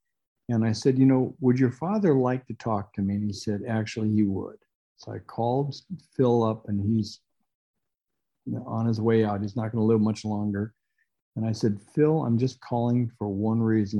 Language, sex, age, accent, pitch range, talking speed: English, male, 50-69, American, 110-130 Hz, 210 wpm